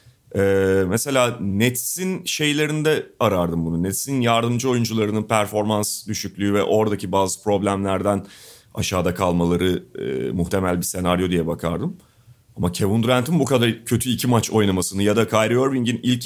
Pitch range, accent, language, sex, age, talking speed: 105-135 Hz, native, Turkish, male, 40-59, 135 wpm